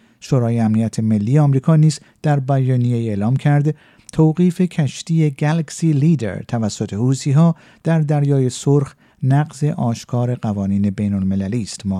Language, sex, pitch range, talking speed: Persian, male, 115-150 Hz, 125 wpm